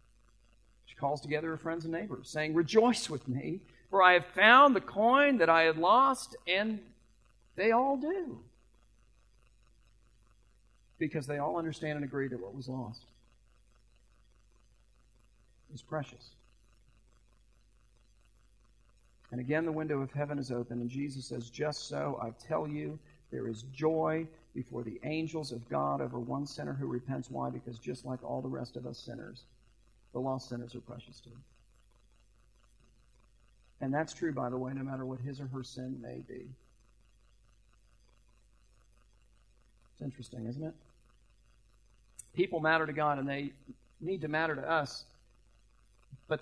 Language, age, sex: English, 50-69, male